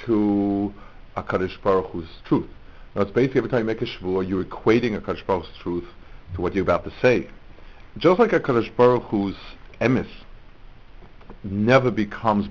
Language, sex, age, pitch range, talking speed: English, male, 50-69, 95-125 Hz, 175 wpm